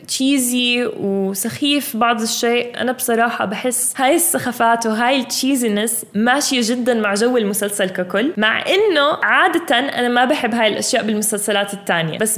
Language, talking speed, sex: Arabic, 135 wpm, female